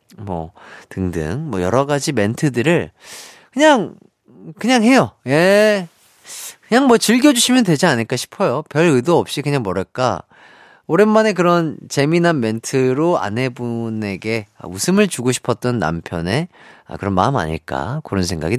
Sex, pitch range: male, 120-180 Hz